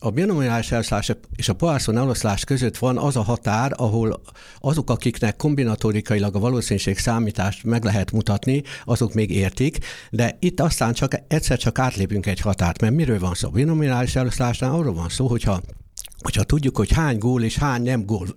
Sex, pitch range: male, 100-130 Hz